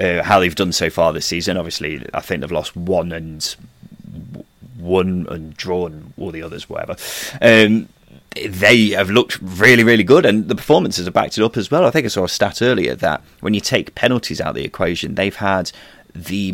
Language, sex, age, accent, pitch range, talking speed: English, male, 30-49, British, 90-130 Hz, 205 wpm